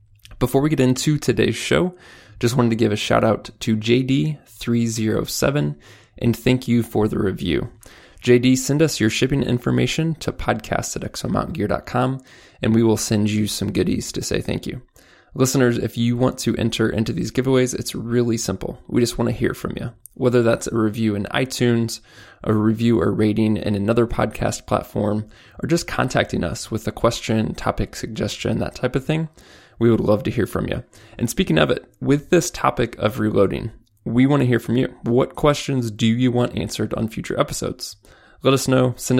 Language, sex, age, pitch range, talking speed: English, male, 20-39, 110-130 Hz, 185 wpm